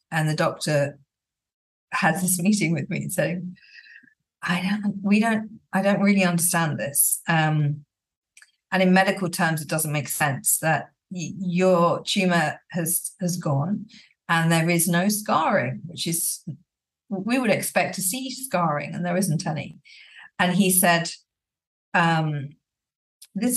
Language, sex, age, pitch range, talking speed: English, female, 50-69, 165-210 Hz, 145 wpm